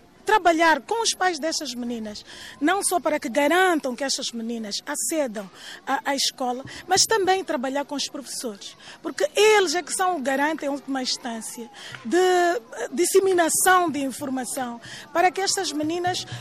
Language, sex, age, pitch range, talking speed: Portuguese, female, 20-39, 265-340 Hz, 155 wpm